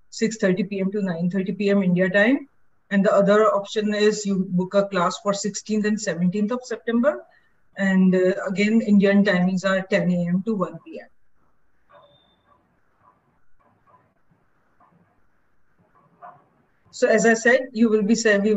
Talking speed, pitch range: 135 wpm, 180-210 Hz